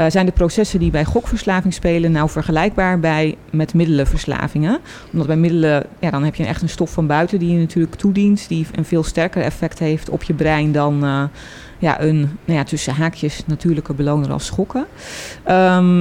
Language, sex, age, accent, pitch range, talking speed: Dutch, female, 30-49, Dutch, 155-185 Hz, 190 wpm